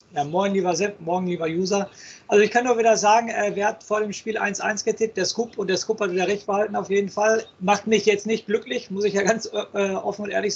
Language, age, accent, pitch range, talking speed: German, 40-59, German, 190-220 Hz, 260 wpm